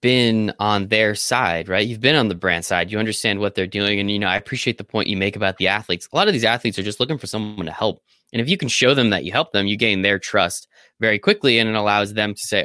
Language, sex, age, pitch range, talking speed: English, male, 20-39, 100-125 Hz, 295 wpm